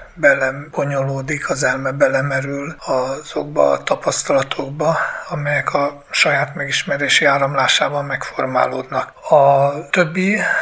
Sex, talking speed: male, 85 wpm